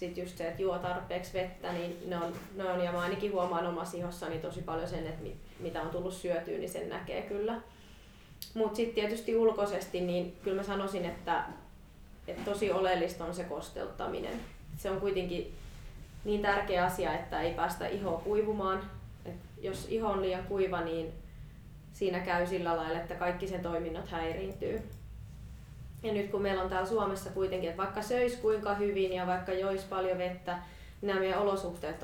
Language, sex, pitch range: Finnish, female, 175-200 Hz